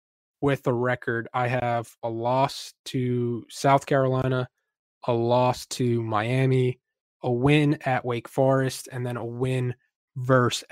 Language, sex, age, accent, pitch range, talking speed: English, male, 20-39, American, 120-135 Hz, 135 wpm